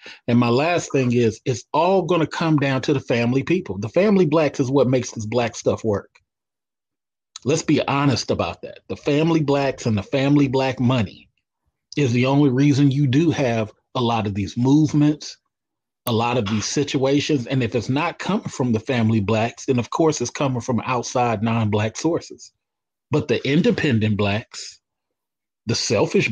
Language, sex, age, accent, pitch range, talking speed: English, male, 30-49, American, 115-145 Hz, 180 wpm